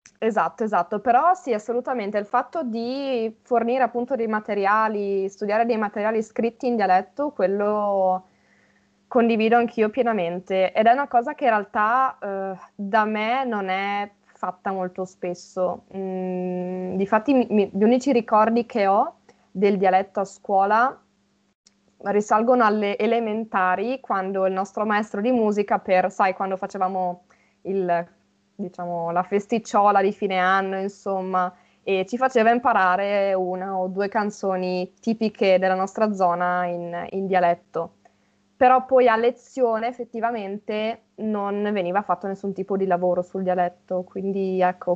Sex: female